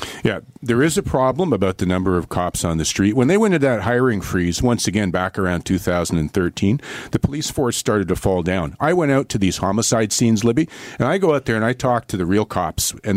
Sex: male